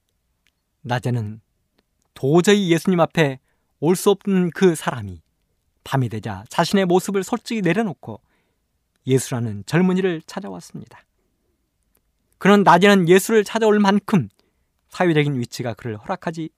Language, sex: Korean, male